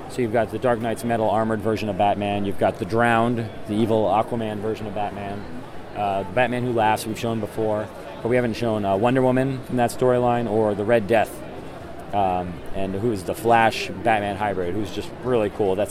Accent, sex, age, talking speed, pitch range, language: American, male, 30-49, 210 wpm, 105-120 Hz, English